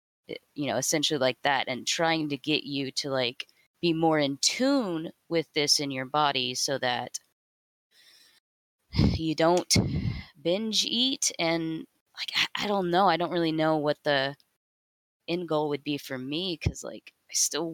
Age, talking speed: 20-39, 165 wpm